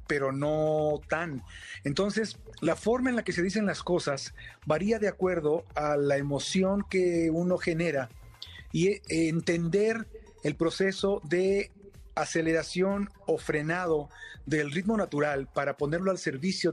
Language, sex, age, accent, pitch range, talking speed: Spanish, male, 50-69, Mexican, 140-180 Hz, 135 wpm